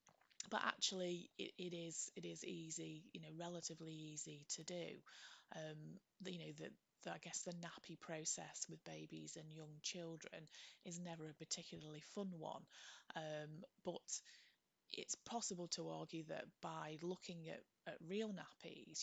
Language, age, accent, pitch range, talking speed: English, 20-39, British, 155-180 Hz, 150 wpm